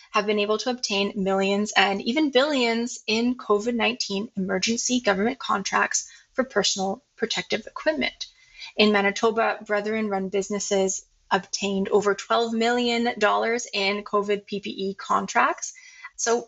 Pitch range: 200-235 Hz